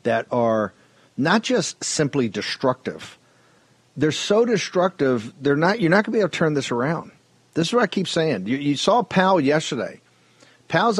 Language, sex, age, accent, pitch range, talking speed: English, male, 50-69, American, 130-180 Hz, 180 wpm